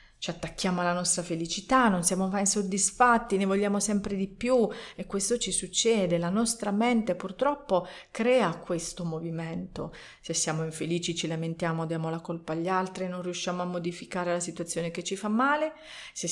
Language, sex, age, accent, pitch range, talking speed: Italian, female, 40-59, native, 170-210 Hz, 170 wpm